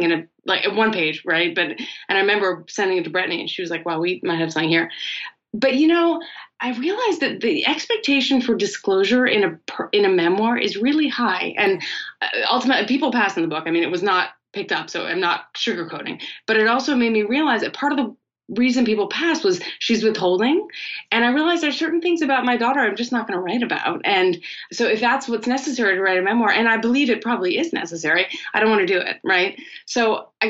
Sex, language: female, English